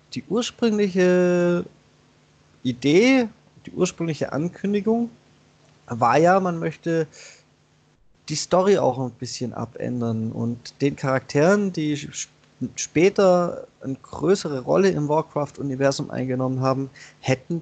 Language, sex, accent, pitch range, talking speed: German, male, German, 125-165 Hz, 100 wpm